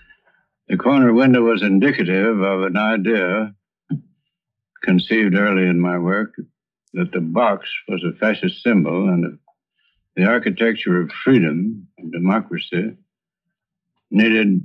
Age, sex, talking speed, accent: 70-89, male, 115 wpm, American